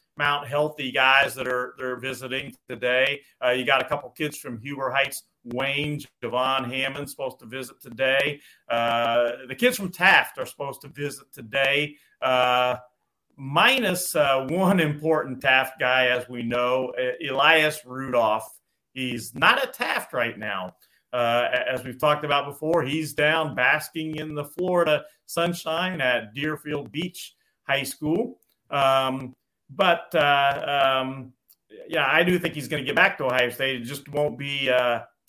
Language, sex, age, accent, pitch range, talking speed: English, male, 40-59, American, 130-155 Hz, 155 wpm